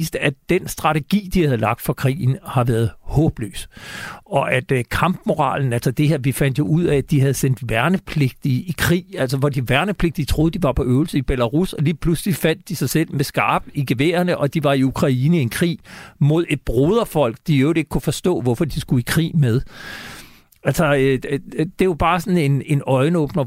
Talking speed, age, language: 210 wpm, 60-79, Danish